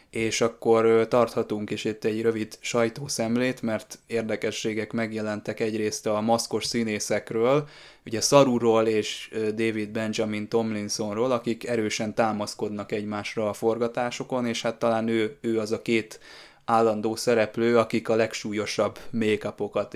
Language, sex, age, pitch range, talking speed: Hungarian, male, 20-39, 110-120 Hz, 125 wpm